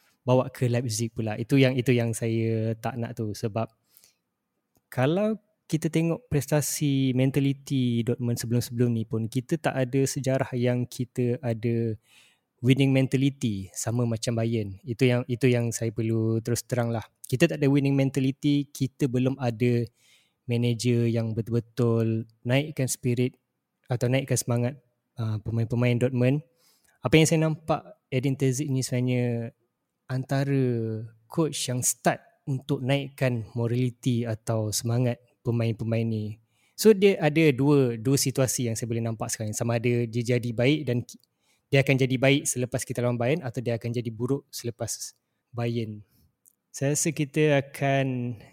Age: 20-39